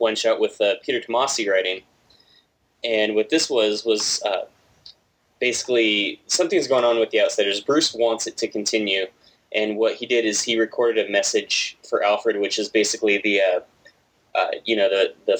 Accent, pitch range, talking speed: American, 110-170 Hz, 180 wpm